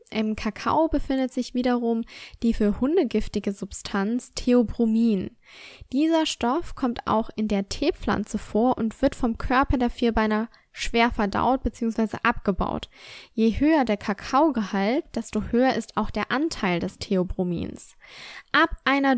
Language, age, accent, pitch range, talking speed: German, 10-29, German, 210-270 Hz, 135 wpm